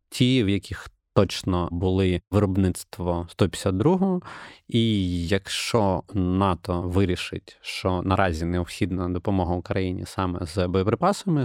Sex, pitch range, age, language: male, 90-105 Hz, 20-39, Ukrainian